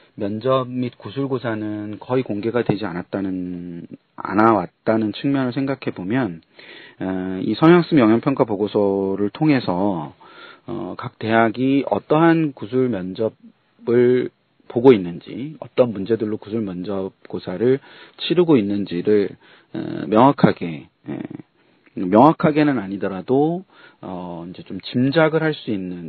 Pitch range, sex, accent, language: 95-130 Hz, male, native, Korean